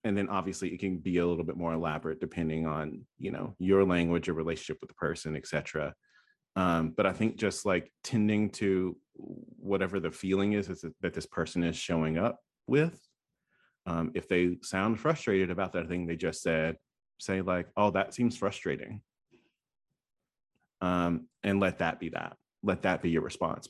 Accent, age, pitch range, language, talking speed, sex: American, 30-49, 85-110 Hz, English, 180 wpm, male